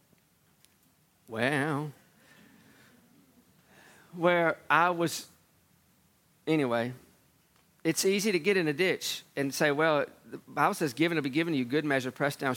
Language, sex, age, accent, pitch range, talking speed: English, male, 40-59, American, 155-210 Hz, 135 wpm